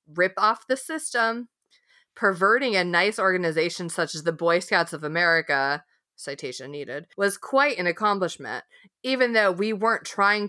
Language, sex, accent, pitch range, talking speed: English, female, American, 160-210 Hz, 150 wpm